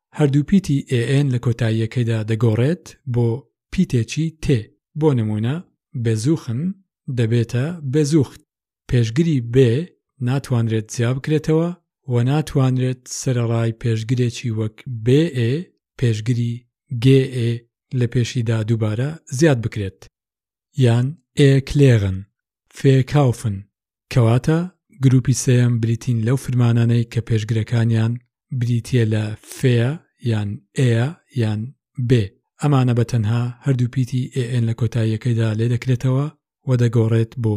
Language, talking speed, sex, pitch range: English, 120 wpm, male, 115-140 Hz